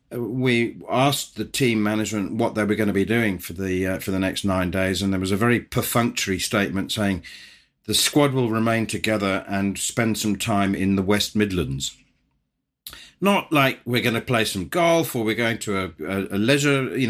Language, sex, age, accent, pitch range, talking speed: English, male, 40-59, British, 100-130 Hz, 205 wpm